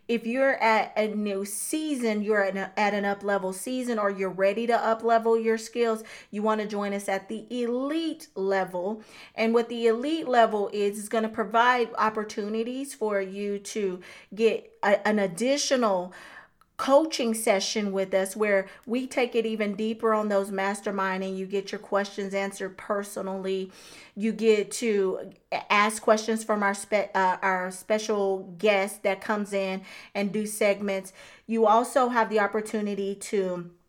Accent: American